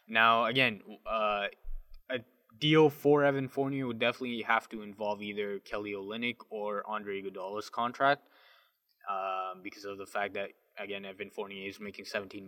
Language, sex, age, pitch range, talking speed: English, male, 10-29, 100-125 Hz, 155 wpm